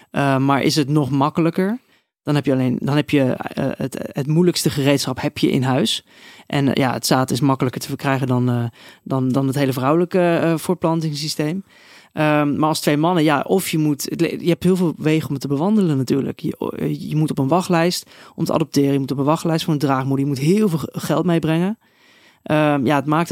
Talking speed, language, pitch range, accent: 225 wpm, Dutch, 145-170 Hz, Dutch